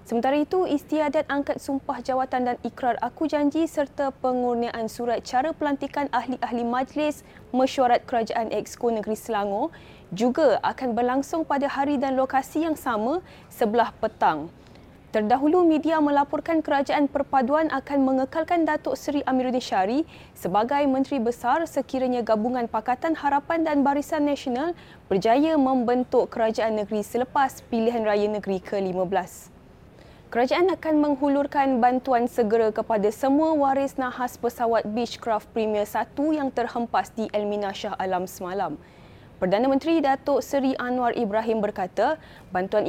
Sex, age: female, 20-39